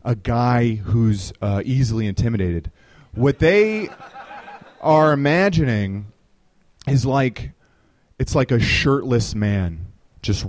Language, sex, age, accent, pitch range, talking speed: English, male, 30-49, American, 105-155 Hz, 105 wpm